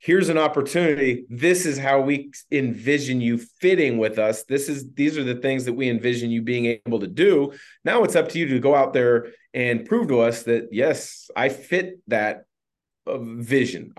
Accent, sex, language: American, male, English